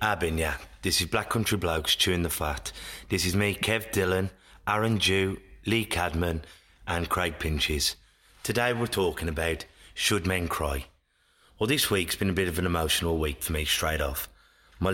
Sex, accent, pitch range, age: male, British, 85-100 Hz, 30-49